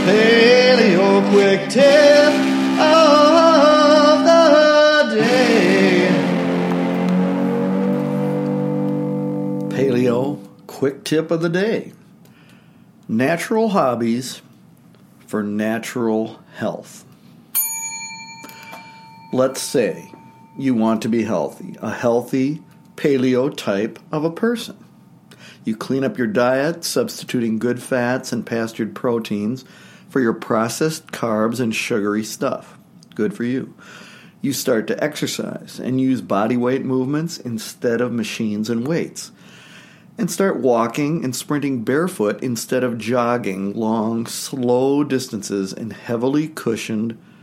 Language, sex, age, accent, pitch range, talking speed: English, male, 60-79, American, 115-180 Hz, 100 wpm